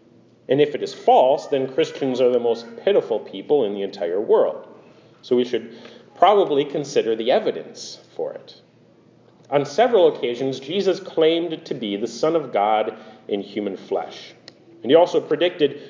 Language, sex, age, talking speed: English, male, 40-59, 160 wpm